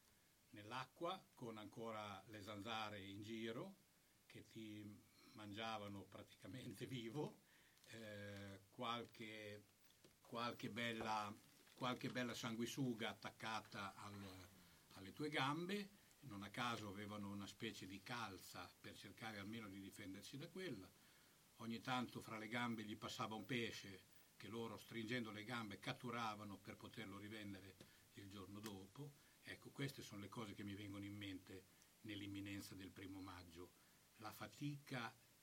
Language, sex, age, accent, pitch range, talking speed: Italian, male, 60-79, native, 100-120 Hz, 120 wpm